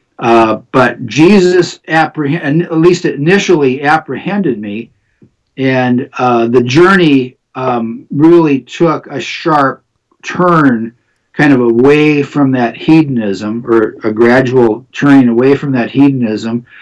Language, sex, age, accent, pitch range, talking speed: English, male, 50-69, American, 115-140 Hz, 120 wpm